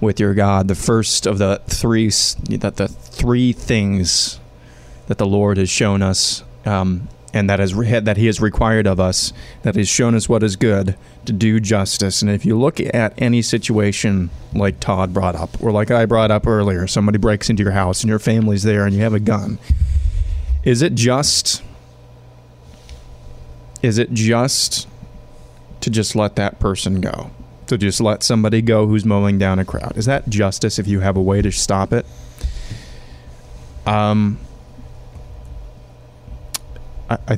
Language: English